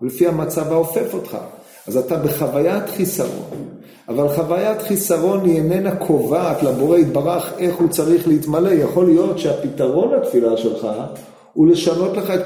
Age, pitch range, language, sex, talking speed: 40-59, 165-215 Hz, Hebrew, male, 140 wpm